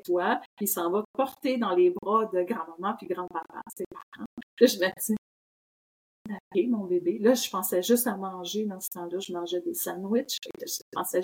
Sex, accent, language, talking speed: female, Canadian, French, 210 wpm